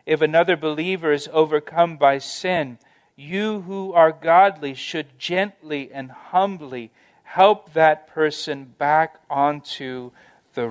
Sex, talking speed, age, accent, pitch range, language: male, 120 wpm, 40-59, American, 130-160 Hz, English